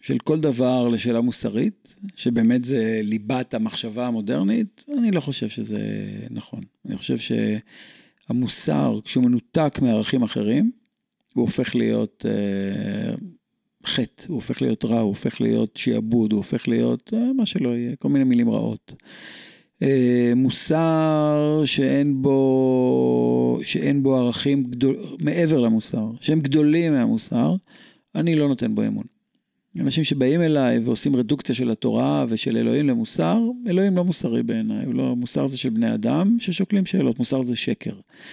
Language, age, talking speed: Hebrew, 50-69, 140 wpm